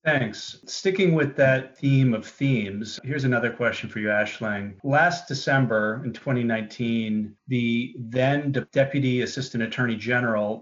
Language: English